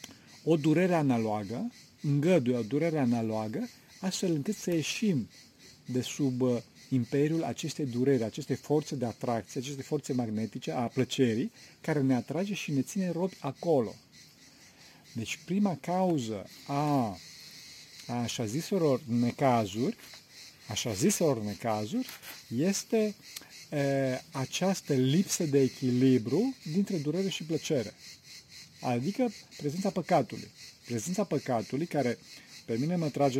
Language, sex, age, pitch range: Romanian, male, 40-59, 120-170 Hz